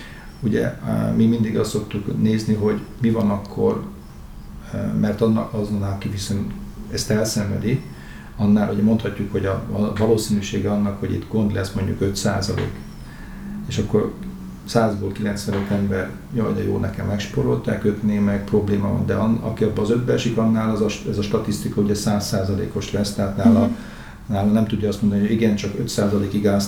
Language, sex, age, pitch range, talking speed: Hungarian, male, 40-59, 100-115 Hz, 165 wpm